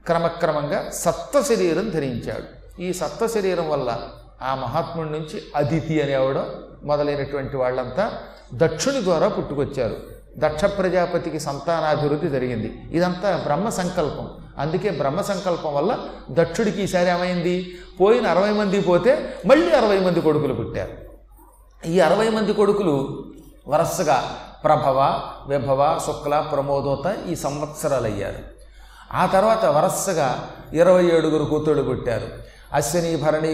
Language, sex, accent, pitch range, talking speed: Telugu, male, native, 150-180 Hz, 110 wpm